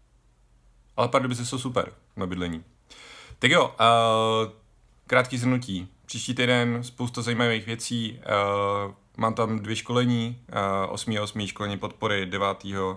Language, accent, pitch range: Czech, native, 100-120 Hz